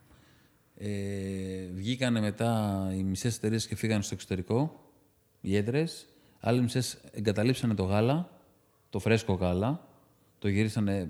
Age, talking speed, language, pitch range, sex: 30-49, 120 wpm, Greek, 105-135 Hz, male